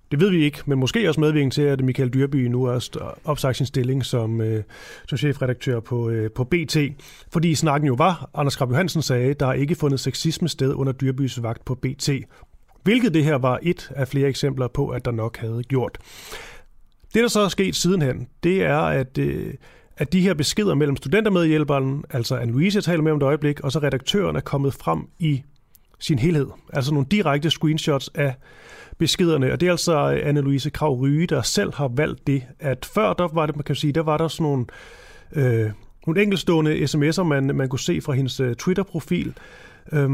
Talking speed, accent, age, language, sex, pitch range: 200 wpm, native, 30-49, Danish, male, 130-160 Hz